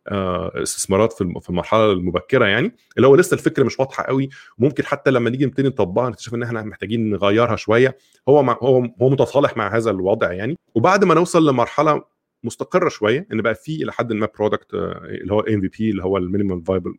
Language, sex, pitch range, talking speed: Arabic, male, 105-135 Hz, 195 wpm